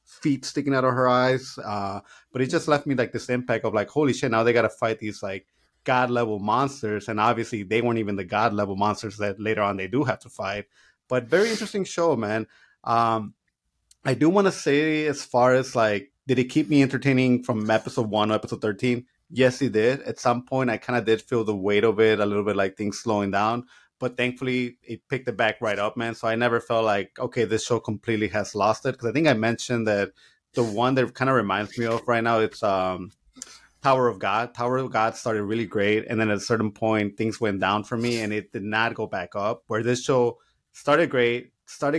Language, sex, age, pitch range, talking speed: English, male, 20-39, 105-125 Hz, 235 wpm